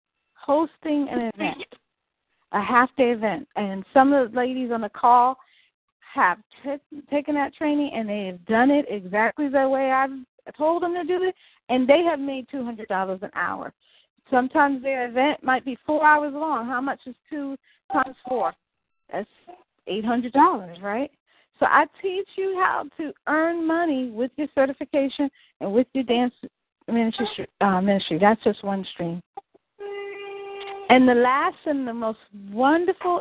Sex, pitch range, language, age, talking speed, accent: female, 240-315 Hz, English, 40-59, 155 wpm, American